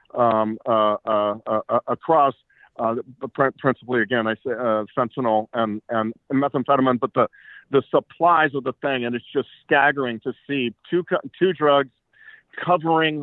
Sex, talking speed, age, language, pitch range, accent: male, 145 wpm, 50-69, English, 120-145 Hz, American